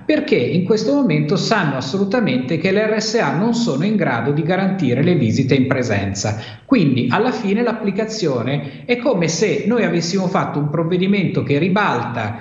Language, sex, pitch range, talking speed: Italian, male, 140-220 Hz, 160 wpm